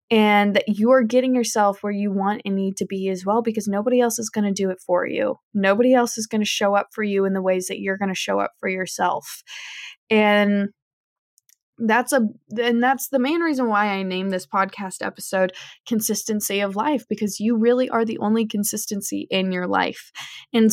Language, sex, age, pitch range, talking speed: English, female, 20-39, 190-225 Hz, 205 wpm